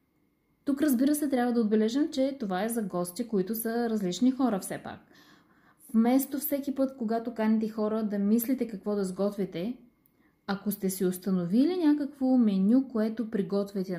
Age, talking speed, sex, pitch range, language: 20-39, 155 wpm, female, 205-255 Hz, Bulgarian